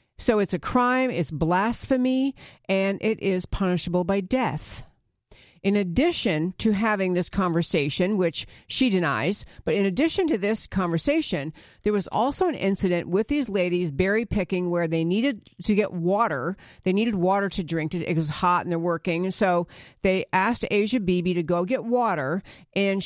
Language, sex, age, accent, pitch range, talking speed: English, female, 50-69, American, 175-240 Hz, 165 wpm